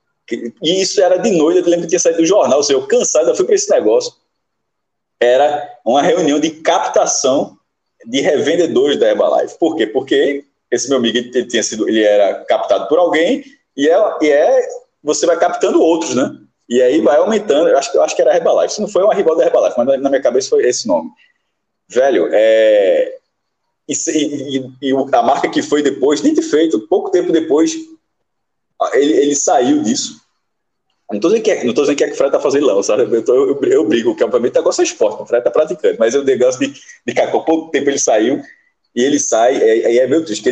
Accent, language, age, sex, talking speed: Brazilian, Portuguese, 20-39, male, 215 wpm